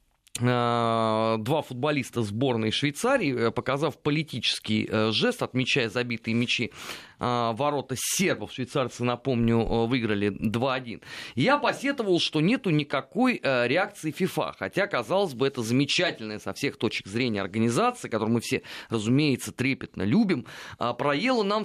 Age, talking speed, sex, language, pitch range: 30-49, 115 wpm, male, Russian, 115-180 Hz